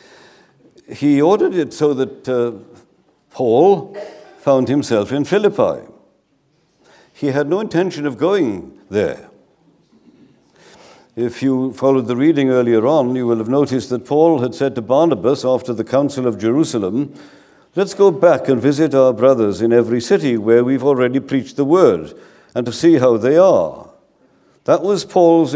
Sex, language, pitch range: male, English, 125-165 Hz